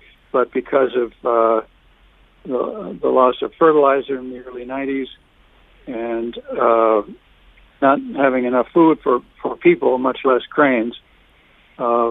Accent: American